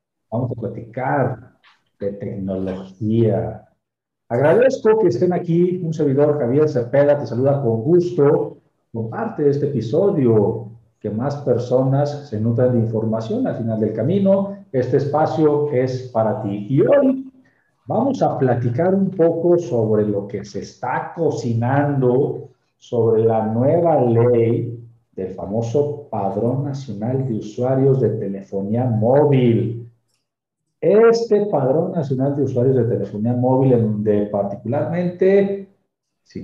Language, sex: Spanish, male